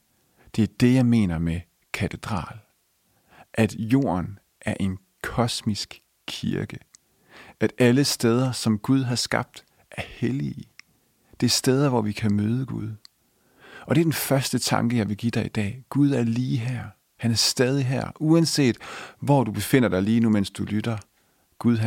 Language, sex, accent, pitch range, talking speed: English, male, Danish, 105-125 Hz, 165 wpm